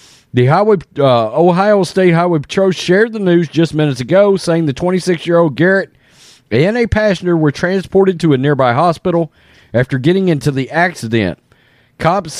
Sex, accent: male, American